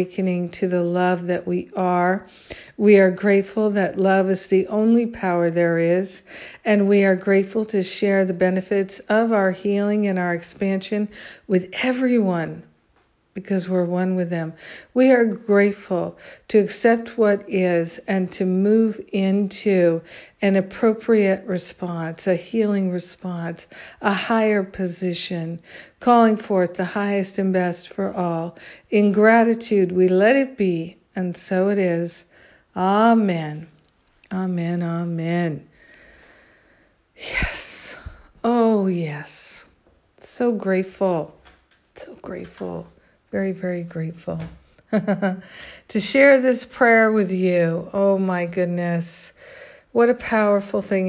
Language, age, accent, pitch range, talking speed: English, 50-69, American, 175-205 Hz, 120 wpm